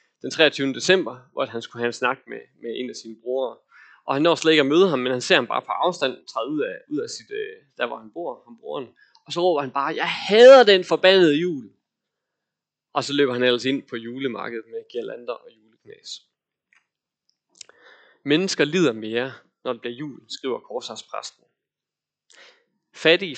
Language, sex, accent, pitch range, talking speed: Danish, male, native, 125-180 Hz, 195 wpm